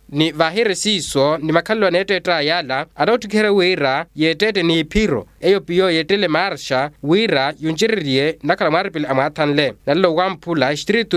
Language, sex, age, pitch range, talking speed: Portuguese, male, 20-39, 155-200 Hz, 140 wpm